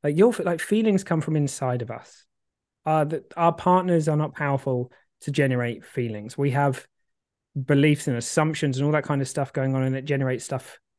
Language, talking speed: English, 195 wpm